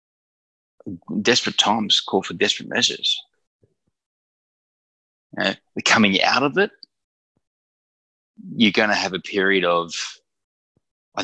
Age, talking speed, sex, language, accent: 20-39, 100 wpm, male, English, Australian